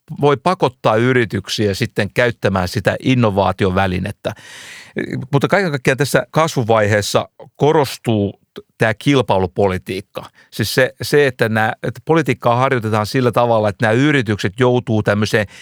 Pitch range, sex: 105-130 Hz, male